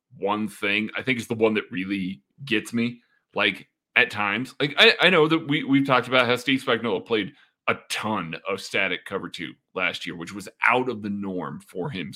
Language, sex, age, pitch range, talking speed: English, male, 30-49, 105-135 Hz, 210 wpm